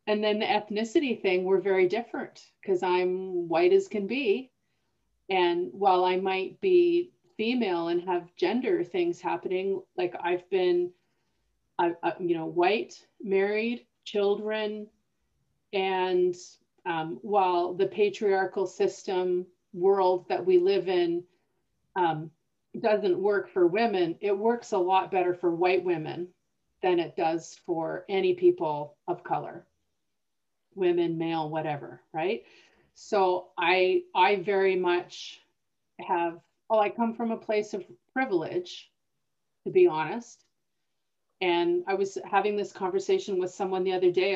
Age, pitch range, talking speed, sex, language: 40-59, 180-260 Hz, 135 wpm, female, English